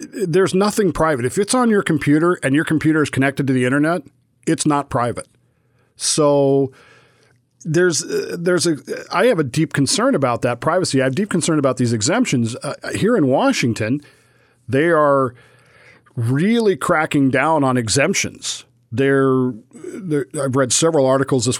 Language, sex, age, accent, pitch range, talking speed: English, male, 50-69, American, 125-160 Hz, 155 wpm